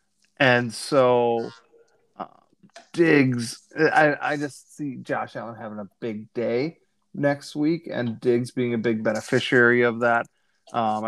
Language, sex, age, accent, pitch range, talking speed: English, male, 30-49, American, 115-130 Hz, 130 wpm